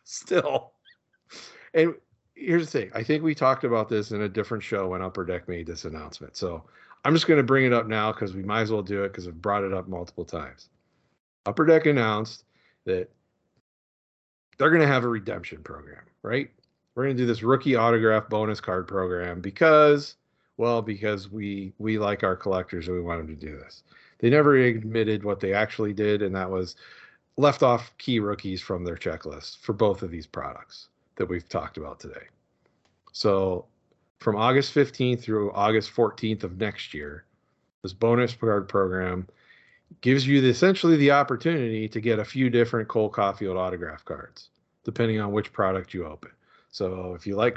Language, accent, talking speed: English, American, 185 wpm